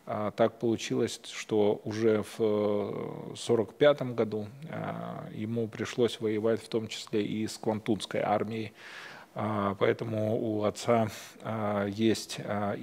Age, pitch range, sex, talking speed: 20-39, 105-120 Hz, male, 105 wpm